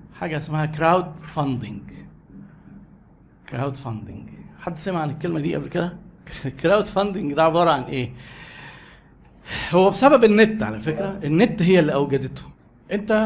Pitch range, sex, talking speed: 155-210 Hz, male, 130 wpm